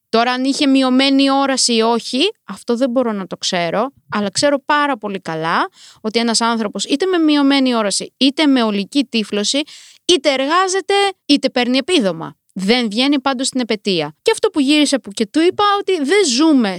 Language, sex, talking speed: Greek, female, 180 wpm